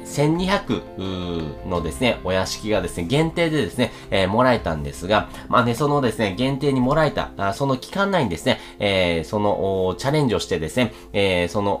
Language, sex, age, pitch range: Japanese, male, 30-49, 95-130 Hz